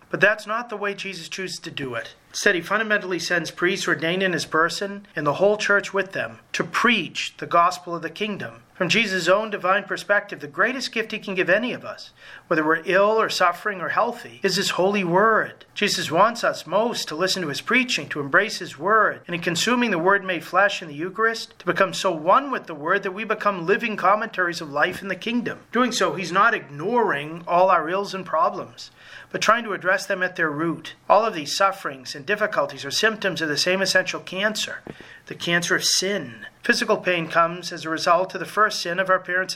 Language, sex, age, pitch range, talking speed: English, male, 40-59, 165-200 Hz, 220 wpm